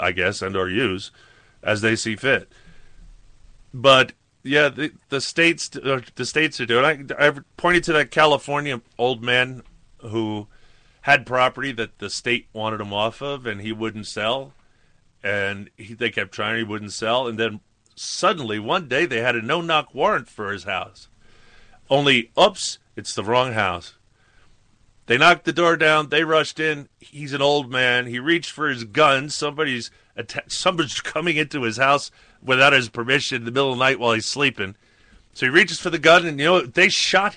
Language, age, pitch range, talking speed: English, 30-49, 110-155 Hz, 185 wpm